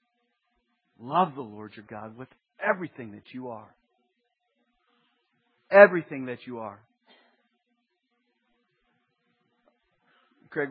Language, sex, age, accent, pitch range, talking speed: English, male, 40-59, American, 145-190 Hz, 85 wpm